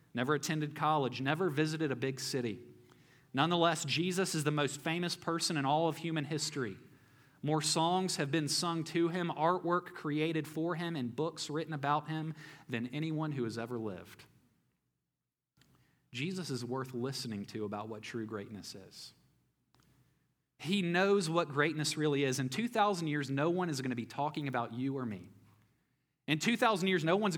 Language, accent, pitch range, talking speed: English, American, 120-160 Hz, 170 wpm